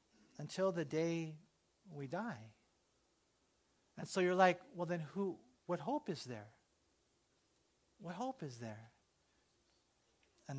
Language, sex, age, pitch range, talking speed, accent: English, male, 40-59, 130-175 Hz, 120 wpm, American